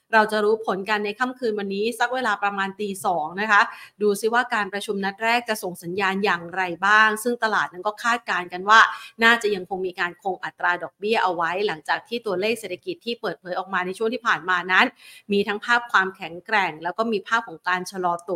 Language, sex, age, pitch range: Thai, female, 30-49, 195-245 Hz